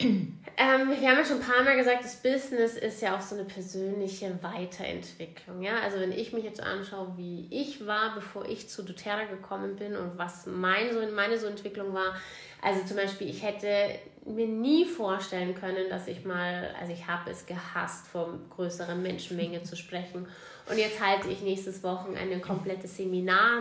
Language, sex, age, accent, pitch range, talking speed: German, female, 20-39, German, 185-225 Hz, 185 wpm